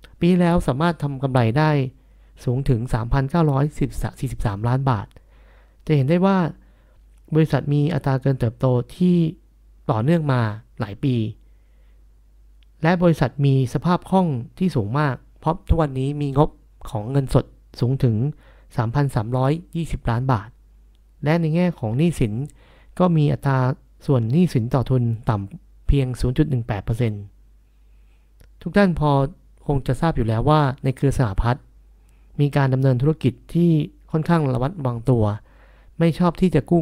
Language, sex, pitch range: Thai, male, 115-155 Hz